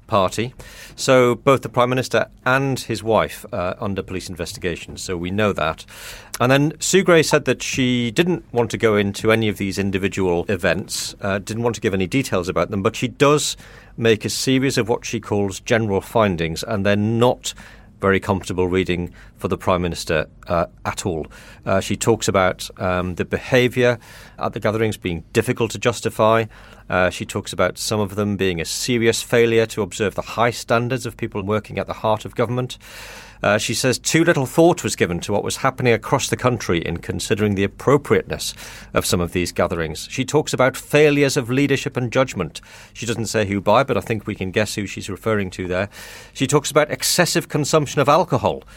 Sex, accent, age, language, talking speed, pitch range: male, British, 40-59, English, 200 wpm, 100-125 Hz